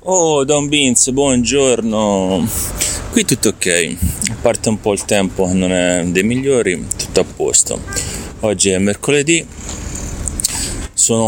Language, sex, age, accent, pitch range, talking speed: Italian, male, 30-49, native, 95-110 Hz, 130 wpm